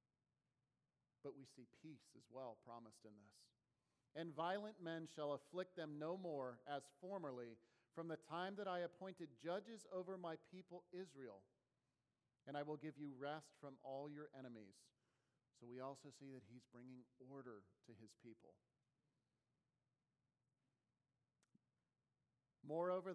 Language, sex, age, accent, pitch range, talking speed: English, male, 40-59, American, 125-155 Hz, 135 wpm